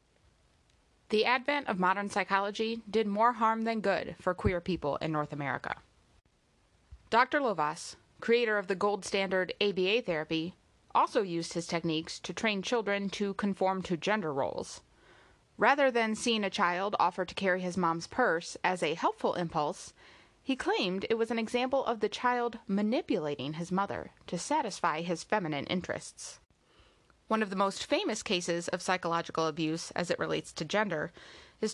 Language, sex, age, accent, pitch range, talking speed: English, female, 20-39, American, 175-225 Hz, 160 wpm